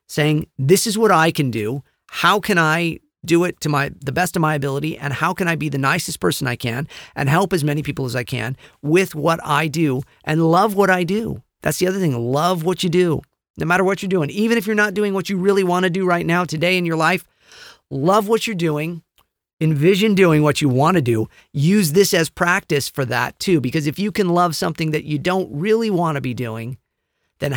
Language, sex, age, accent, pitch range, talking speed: English, male, 40-59, American, 150-195 Hz, 235 wpm